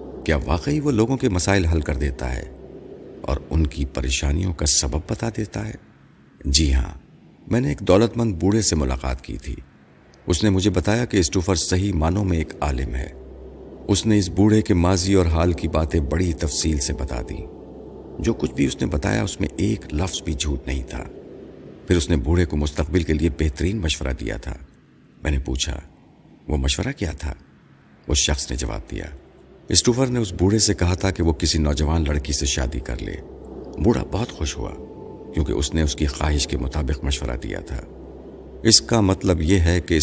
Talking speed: 200 wpm